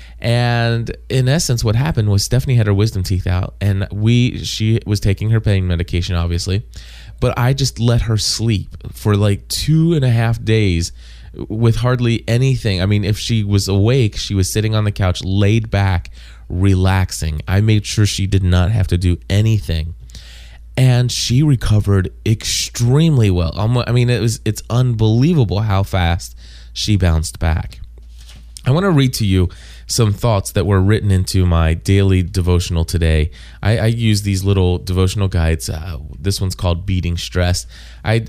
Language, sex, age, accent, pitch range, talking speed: English, male, 20-39, American, 90-110 Hz, 170 wpm